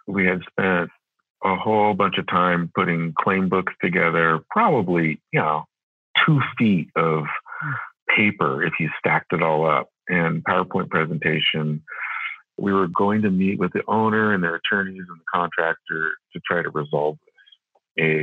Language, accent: English, American